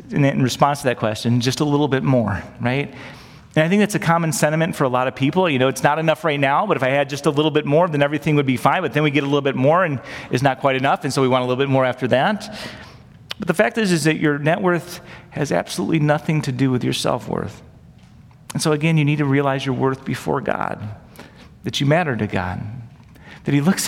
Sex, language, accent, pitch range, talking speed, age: male, English, American, 130-165 Hz, 260 wpm, 40-59